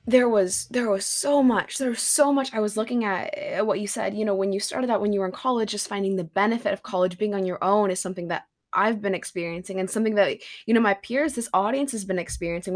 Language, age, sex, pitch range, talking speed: English, 20-39, female, 190-245 Hz, 265 wpm